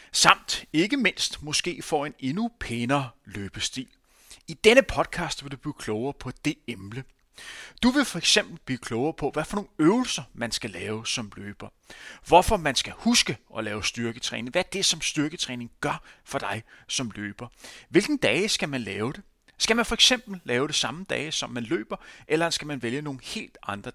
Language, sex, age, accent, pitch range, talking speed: Danish, male, 30-49, native, 120-180 Hz, 185 wpm